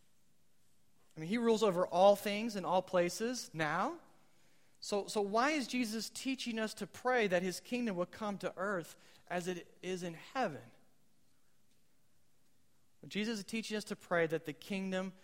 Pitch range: 160-205 Hz